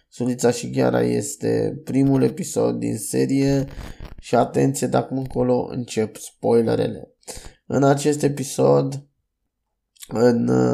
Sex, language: male, Romanian